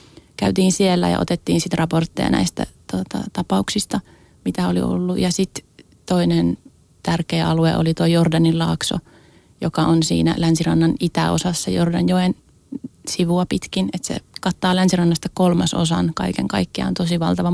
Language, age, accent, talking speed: Finnish, 30-49, native, 130 wpm